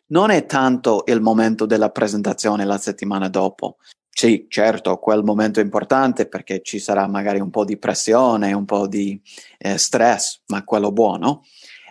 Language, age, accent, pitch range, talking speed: Italian, 30-49, native, 100-125 Hz, 160 wpm